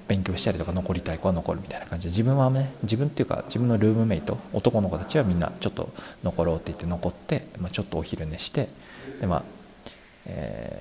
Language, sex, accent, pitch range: Japanese, male, native, 85-115 Hz